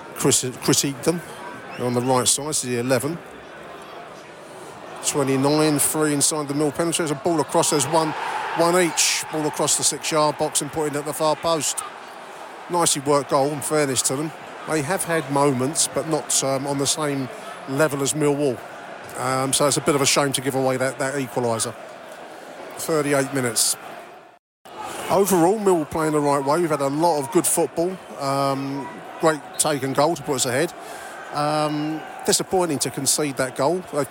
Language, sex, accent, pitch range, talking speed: English, male, British, 130-155 Hz, 175 wpm